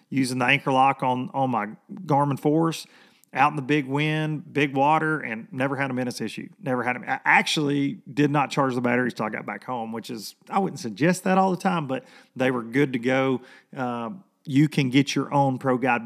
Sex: male